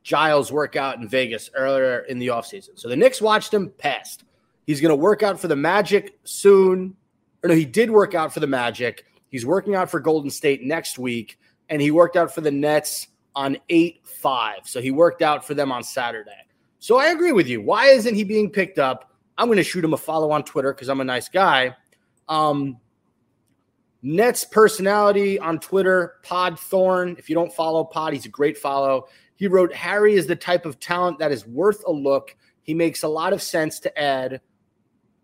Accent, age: American, 30-49